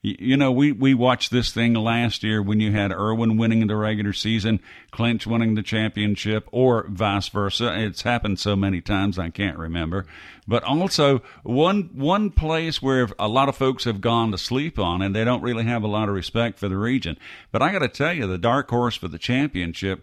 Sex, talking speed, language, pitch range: male, 210 wpm, English, 100-125 Hz